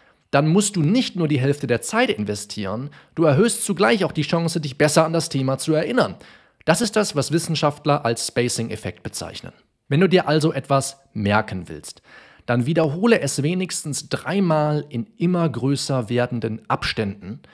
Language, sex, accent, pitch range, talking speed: German, male, German, 120-165 Hz, 165 wpm